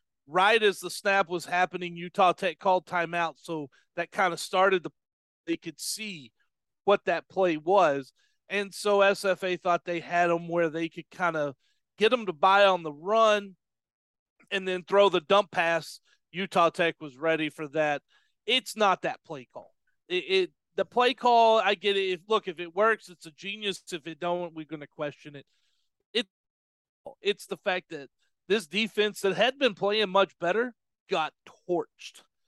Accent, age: American, 40-59